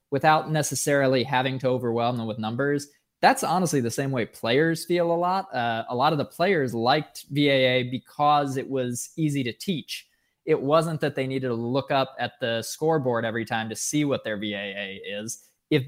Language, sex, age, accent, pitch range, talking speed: English, male, 20-39, American, 115-145 Hz, 195 wpm